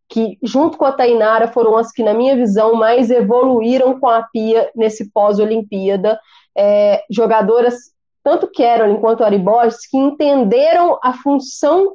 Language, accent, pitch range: Portuguese, Brazilian, 225-280 Hz